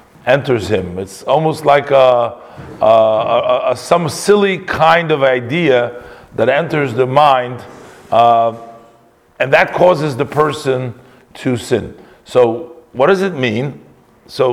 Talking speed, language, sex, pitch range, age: 130 wpm, English, male, 110-150 Hz, 50-69